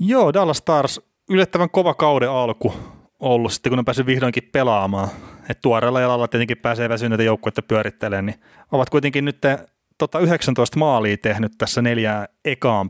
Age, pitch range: 30-49, 110-130 Hz